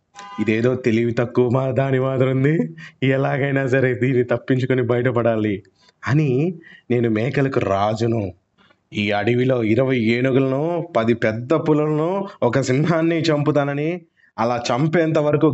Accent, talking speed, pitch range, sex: native, 110 wpm, 120-155 Hz, male